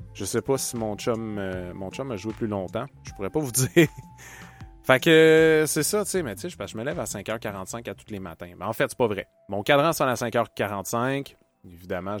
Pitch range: 95-135 Hz